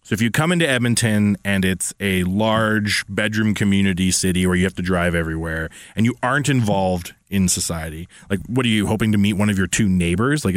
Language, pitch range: English, 100-125 Hz